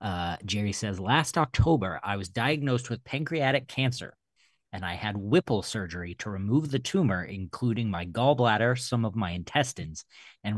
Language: English